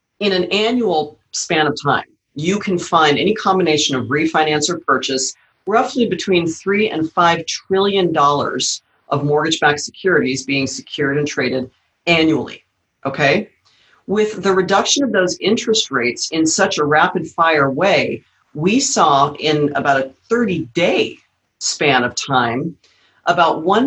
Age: 40-59